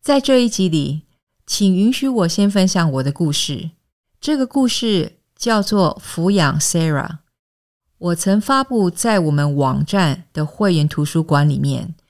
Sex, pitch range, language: female, 150-210 Hz, English